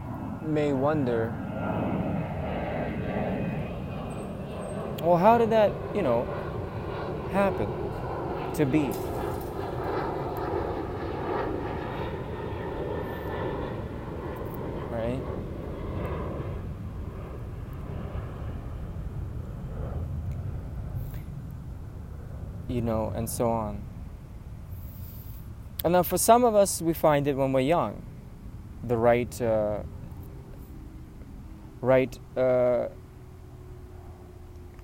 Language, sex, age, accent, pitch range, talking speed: English, male, 20-39, American, 100-125 Hz, 60 wpm